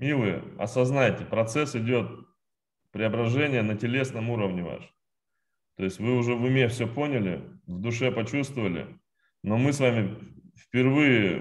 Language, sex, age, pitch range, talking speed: Russian, male, 20-39, 100-120 Hz, 130 wpm